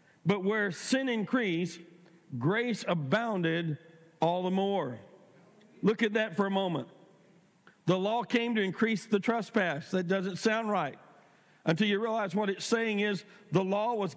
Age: 50-69